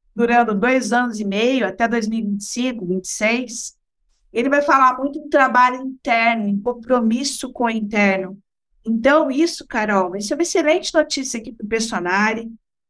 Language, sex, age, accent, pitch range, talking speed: Portuguese, female, 50-69, Brazilian, 230-280 Hz, 150 wpm